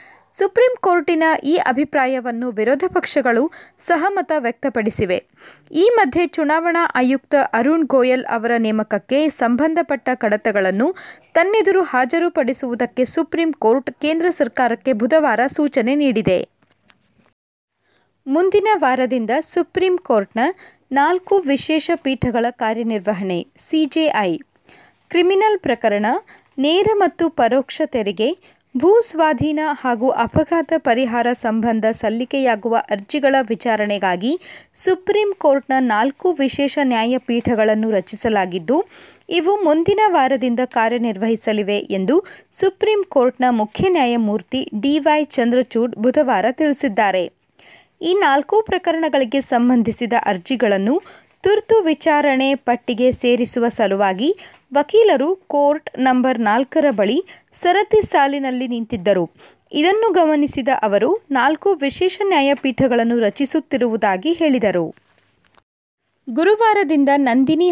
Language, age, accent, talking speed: Kannada, 20-39, native, 85 wpm